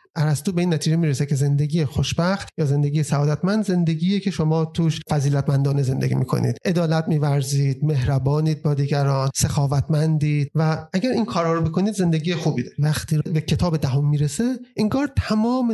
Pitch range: 145-190 Hz